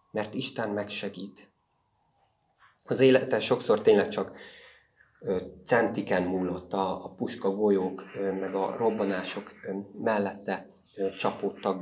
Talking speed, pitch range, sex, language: 90 wpm, 95-115 Hz, male, Hungarian